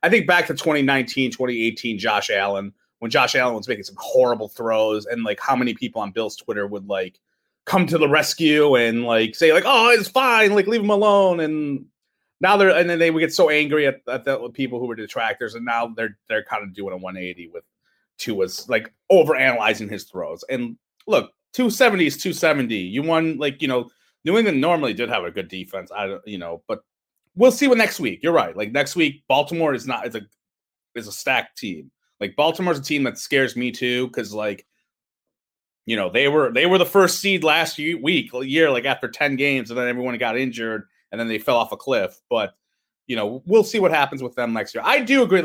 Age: 30-49